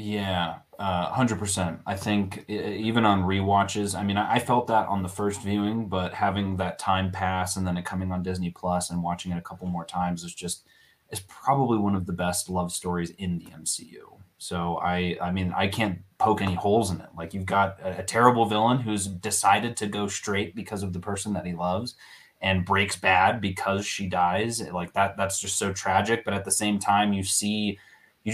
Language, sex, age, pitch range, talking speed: English, male, 20-39, 90-105 Hz, 215 wpm